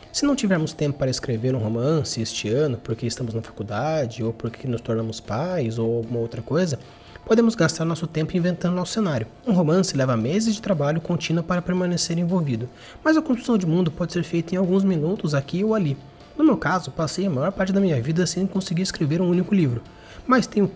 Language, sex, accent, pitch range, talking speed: Portuguese, male, Brazilian, 140-200 Hz, 210 wpm